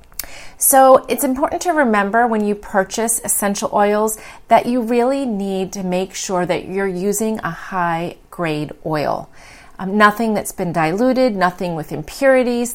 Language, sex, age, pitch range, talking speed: English, female, 30-49, 175-220 Hz, 145 wpm